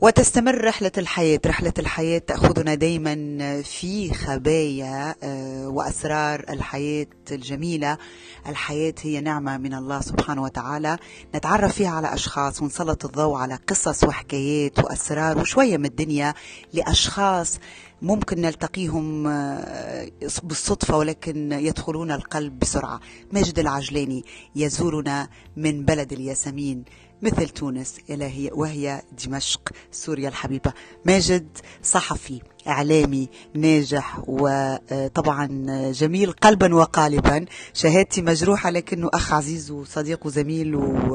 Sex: female